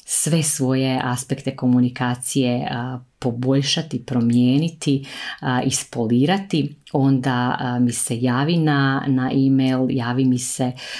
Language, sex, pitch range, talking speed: Croatian, female, 125-145 Hz, 95 wpm